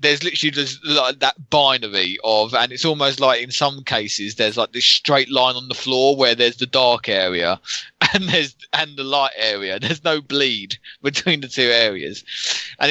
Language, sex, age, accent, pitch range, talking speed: English, male, 20-39, British, 110-140 Hz, 190 wpm